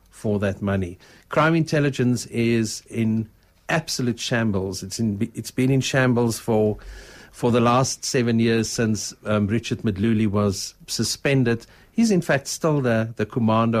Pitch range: 110-140 Hz